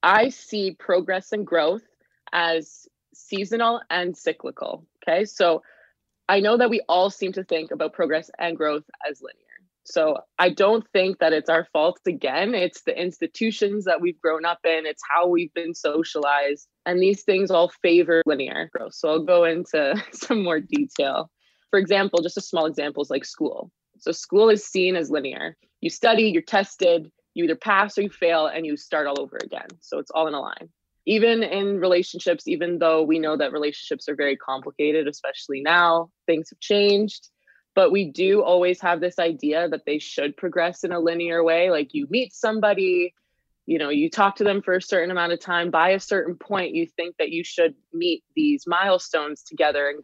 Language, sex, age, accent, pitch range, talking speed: English, female, 20-39, American, 160-200 Hz, 190 wpm